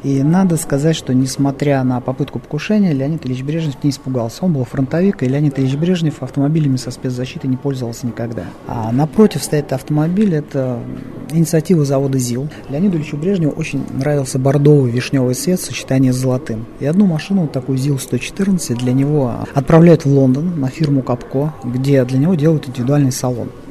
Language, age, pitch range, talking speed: Russian, 30-49, 130-155 Hz, 170 wpm